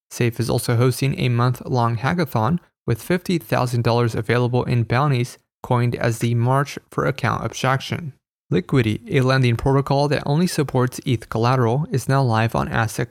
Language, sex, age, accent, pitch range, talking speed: English, male, 20-39, American, 120-135 Hz, 150 wpm